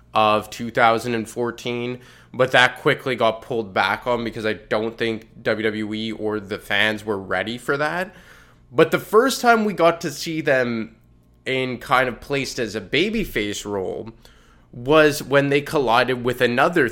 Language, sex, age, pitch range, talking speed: English, male, 20-39, 110-130 Hz, 155 wpm